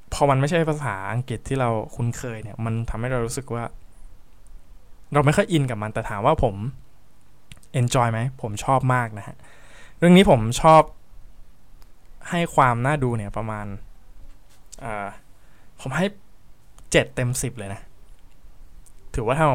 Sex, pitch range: male, 105-140 Hz